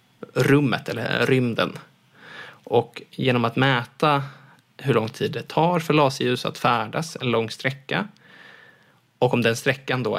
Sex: male